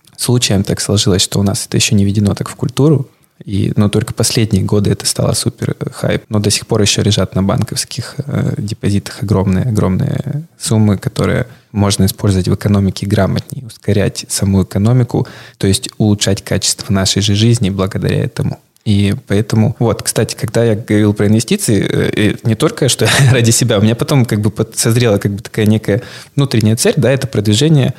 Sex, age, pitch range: male, 20-39, 105-130 Hz